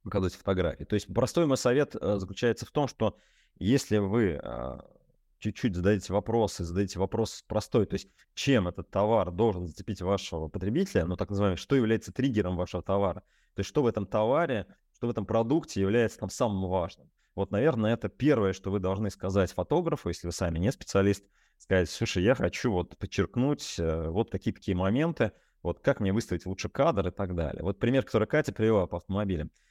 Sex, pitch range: male, 95-120 Hz